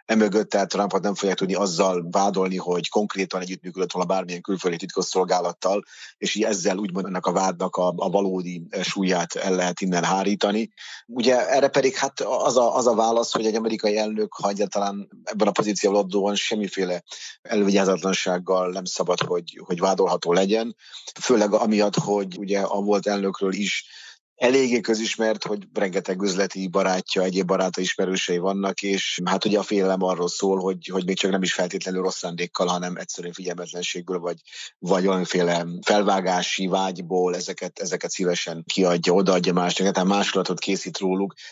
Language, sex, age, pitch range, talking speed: Hungarian, male, 30-49, 90-100 Hz, 155 wpm